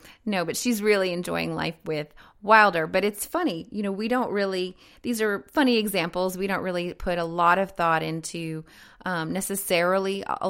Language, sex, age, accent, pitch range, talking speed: English, female, 30-49, American, 165-205 Hz, 185 wpm